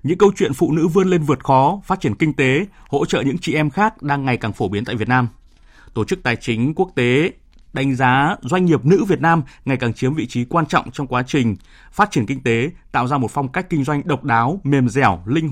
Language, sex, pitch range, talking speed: Vietnamese, male, 125-160 Hz, 255 wpm